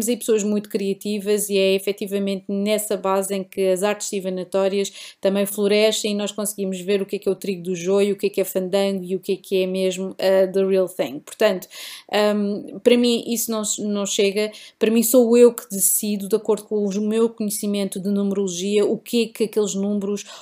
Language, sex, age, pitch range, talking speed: Portuguese, female, 20-39, 200-245 Hz, 210 wpm